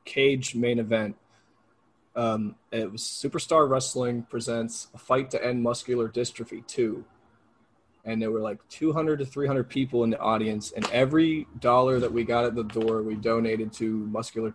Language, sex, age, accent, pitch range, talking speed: English, male, 20-39, American, 110-130 Hz, 165 wpm